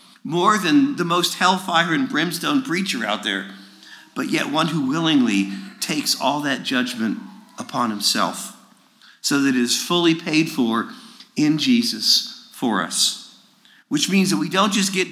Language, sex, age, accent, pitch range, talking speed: English, male, 50-69, American, 160-250 Hz, 155 wpm